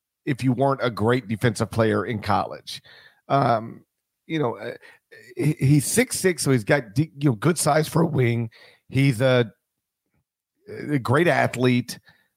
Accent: American